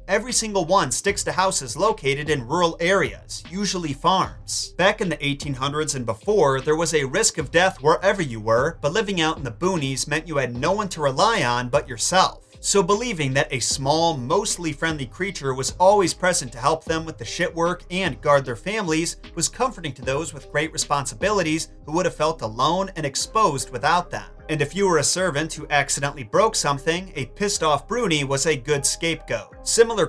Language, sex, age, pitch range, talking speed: English, male, 30-49, 135-180 Hz, 195 wpm